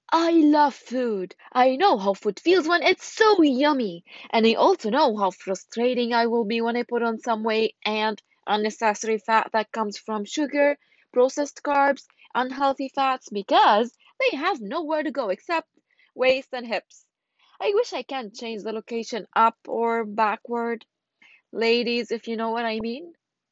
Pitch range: 210-300 Hz